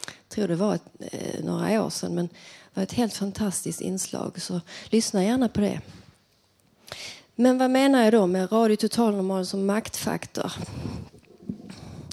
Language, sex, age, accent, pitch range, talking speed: Swedish, female, 30-49, native, 170-220 Hz, 145 wpm